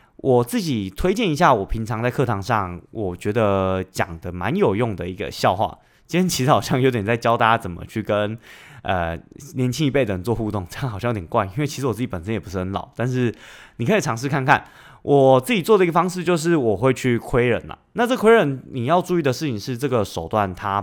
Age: 20-39